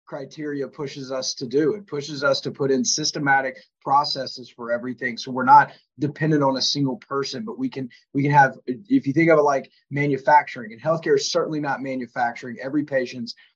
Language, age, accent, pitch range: English, 30-49, American, 130-170 Hz